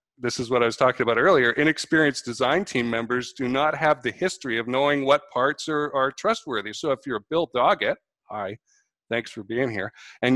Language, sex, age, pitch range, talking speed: English, male, 50-69, 115-140 Hz, 210 wpm